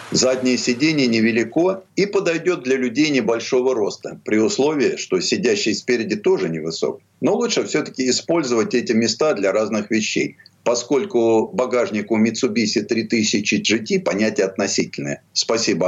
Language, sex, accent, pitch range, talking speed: Russian, male, native, 115-170 Hz, 125 wpm